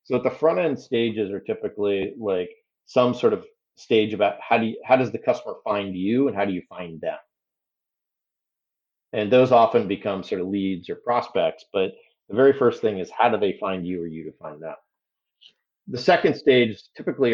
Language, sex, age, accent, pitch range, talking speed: English, male, 40-59, American, 100-130 Hz, 205 wpm